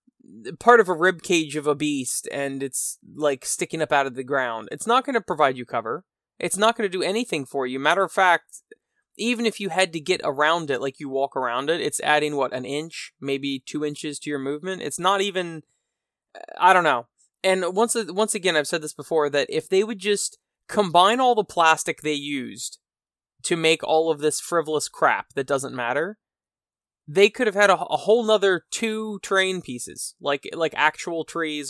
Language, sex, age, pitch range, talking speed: English, male, 20-39, 140-190 Hz, 205 wpm